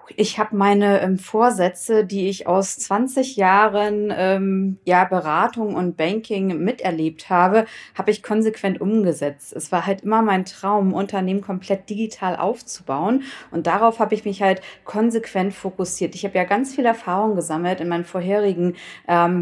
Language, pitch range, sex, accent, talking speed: German, 175-210 Hz, female, German, 150 wpm